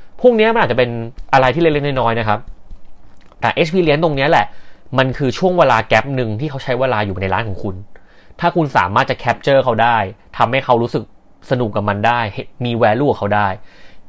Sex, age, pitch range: male, 30-49, 100-135 Hz